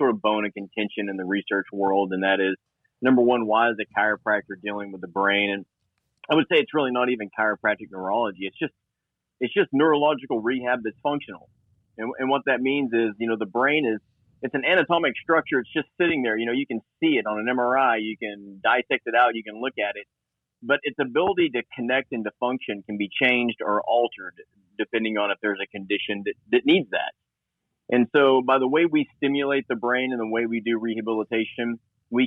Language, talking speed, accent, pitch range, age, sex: English, 220 wpm, American, 105-130 Hz, 30-49, male